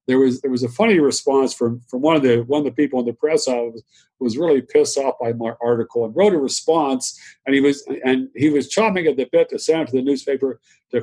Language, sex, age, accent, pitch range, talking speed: English, male, 50-69, American, 130-175 Hz, 265 wpm